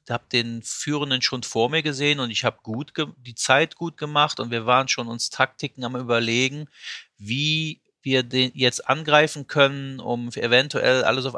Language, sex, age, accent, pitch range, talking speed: German, male, 40-59, German, 115-140 Hz, 180 wpm